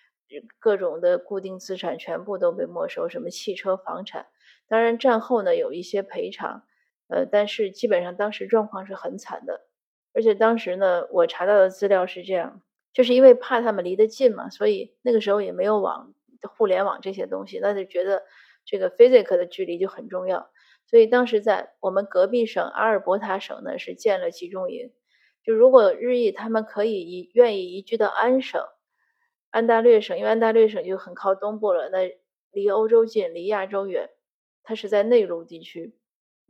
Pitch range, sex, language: 190-265 Hz, female, Chinese